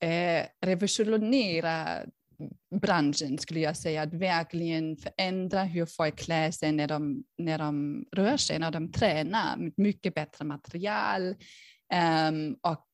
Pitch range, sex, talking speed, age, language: 160-195 Hz, female, 130 wpm, 20-39, Swedish